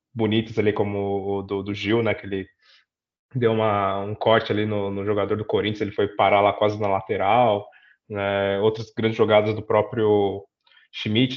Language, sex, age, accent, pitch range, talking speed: Portuguese, male, 20-39, Brazilian, 100-115 Hz, 180 wpm